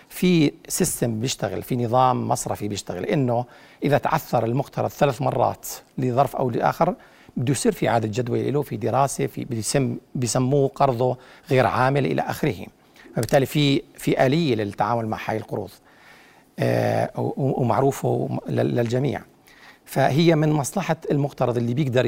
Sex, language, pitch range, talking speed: male, Arabic, 120-150 Hz, 135 wpm